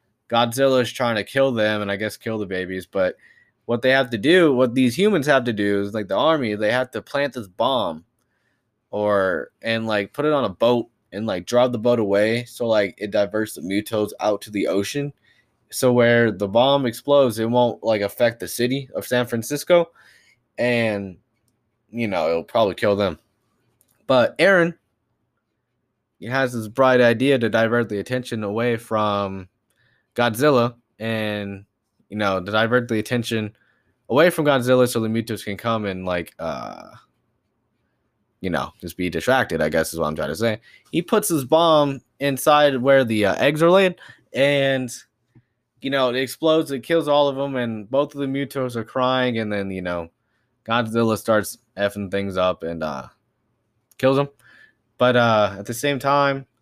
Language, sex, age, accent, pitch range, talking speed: English, male, 20-39, American, 105-130 Hz, 180 wpm